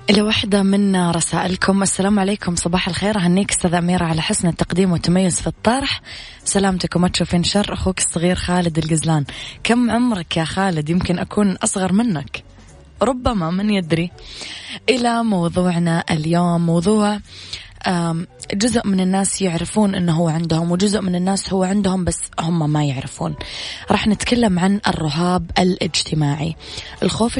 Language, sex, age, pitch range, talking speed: English, female, 20-39, 160-190 Hz, 135 wpm